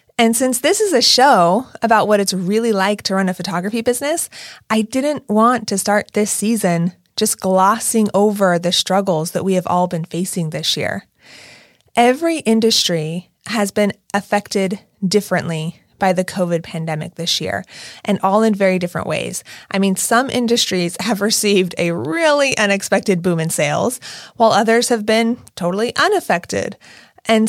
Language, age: English, 30-49